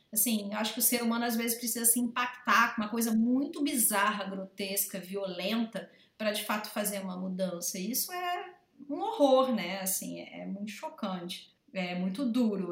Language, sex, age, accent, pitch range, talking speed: Portuguese, female, 30-49, Brazilian, 195-240 Hz, 175 wpm